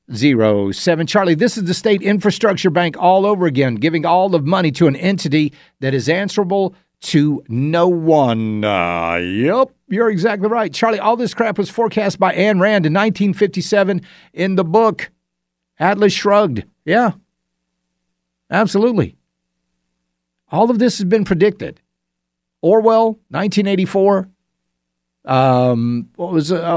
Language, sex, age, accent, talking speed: English, male, 50-69, American, 125 wpm